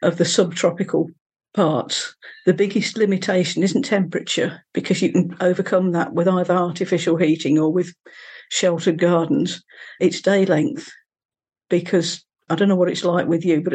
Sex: female